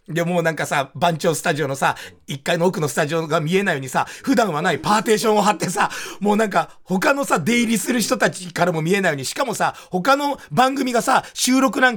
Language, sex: Japanese, male